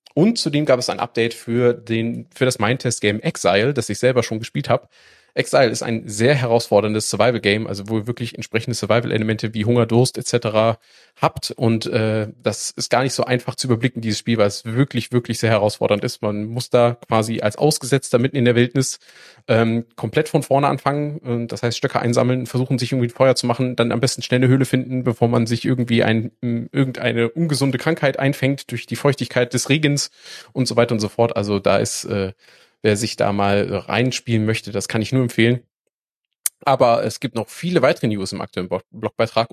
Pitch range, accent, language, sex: 110-130 Hz, German, German, male